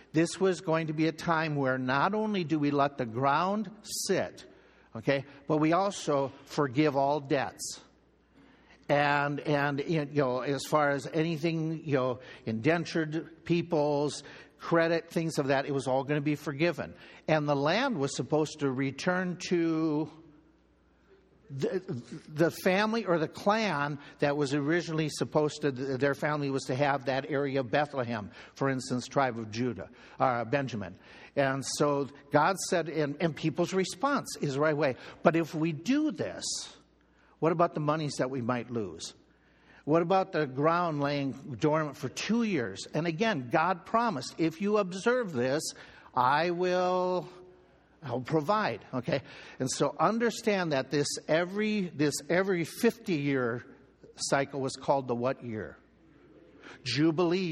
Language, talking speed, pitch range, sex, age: English, 150 wpm, 140-175 Hz, male, 60-79